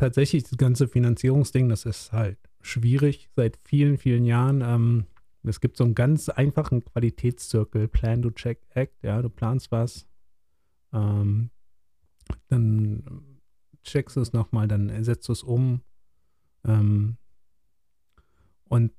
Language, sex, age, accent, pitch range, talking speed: German, male, 30-49, German, 110-130 Hz, 130 wpm